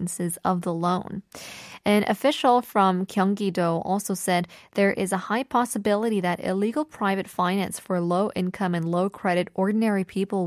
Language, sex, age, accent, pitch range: Korean, female, 10-29, American, 185-270 Hz